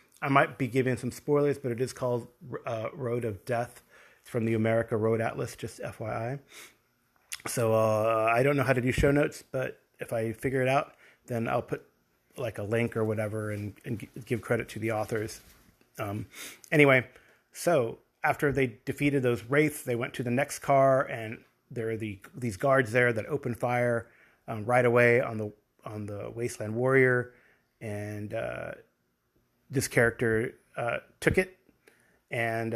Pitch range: 110-130 Hz